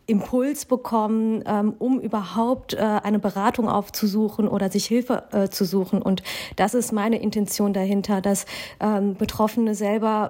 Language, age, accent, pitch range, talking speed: German, 40-59, German, 200-220 Hz, 120 wpm